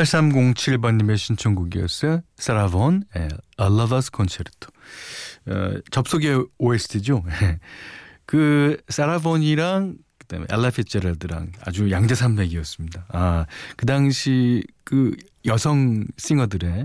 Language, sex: Korean, male